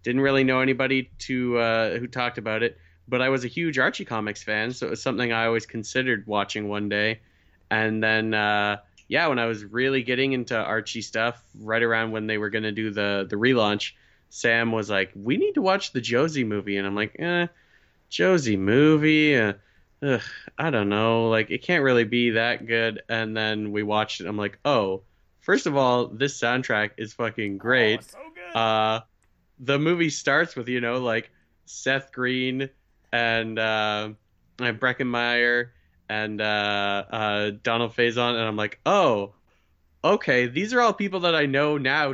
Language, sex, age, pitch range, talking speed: English, male, 20-39, 105-130 Hz, 180 wpm